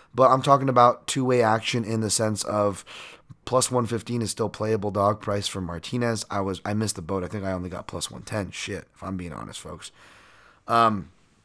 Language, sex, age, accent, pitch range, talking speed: English, male, 20-39, American, 100-120 Hz, 205 wpm